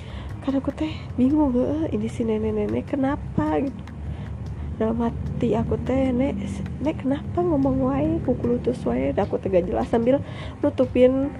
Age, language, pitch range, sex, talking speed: 20-39, Indonesian, 195-280 Hz, female, 135 wpm